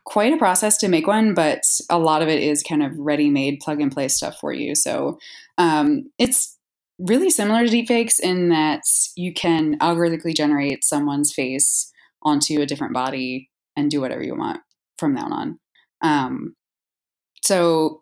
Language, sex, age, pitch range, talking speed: English, female, 20-39, 145-190 Hz, 160 wpm